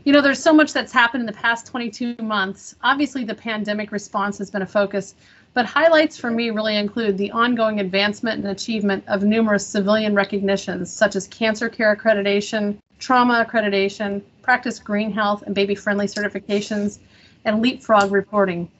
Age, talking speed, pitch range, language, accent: 30-49, 165 wpm, 195-230 Hz, English, American